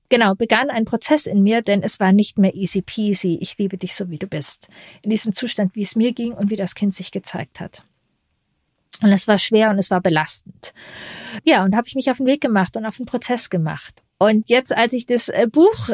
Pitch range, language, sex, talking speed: 200-245 Hz, German, female, 235 wpm